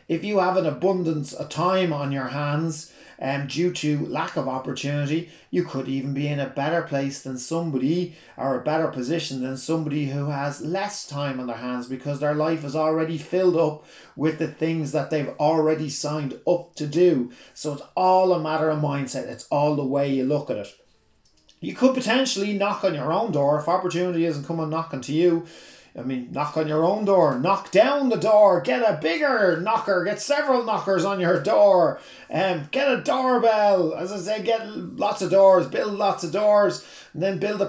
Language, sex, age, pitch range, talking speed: English, male, 30-49, 145-185 Hz, 200 wpm